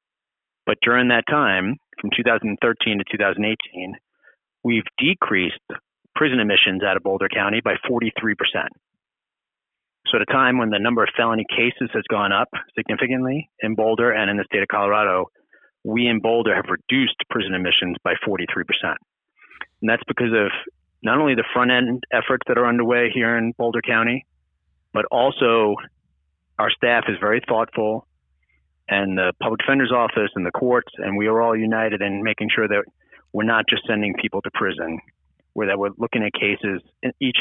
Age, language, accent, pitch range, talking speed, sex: 40-59, English, American, 100-120 Hz, 170 wpm, male